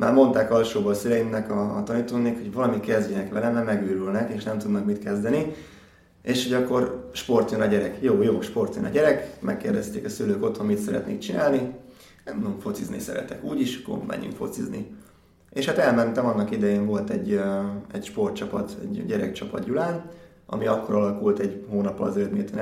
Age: 20-39